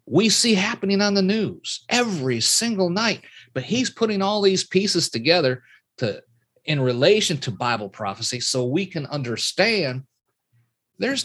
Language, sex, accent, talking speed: English, male, American, 145 wpm